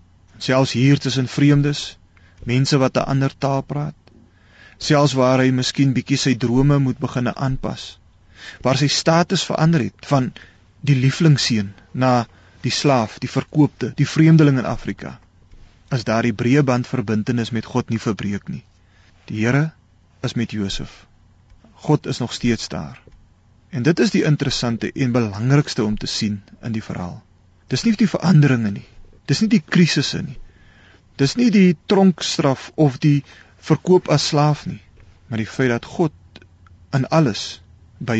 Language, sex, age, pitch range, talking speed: Italian, male, 30-49, 100-145 Hz, 160 wpm